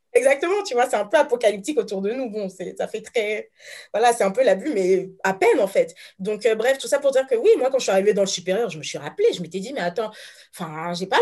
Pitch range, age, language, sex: 185-280 Hz, 20-39, French, female